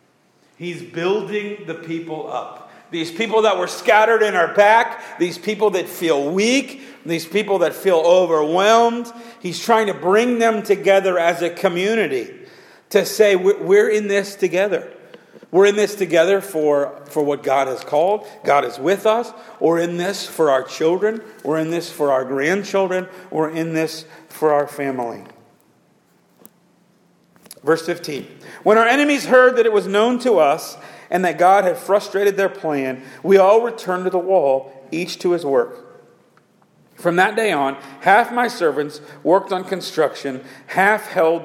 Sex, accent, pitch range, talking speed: male, American, 160-215 Hz, 160 wpm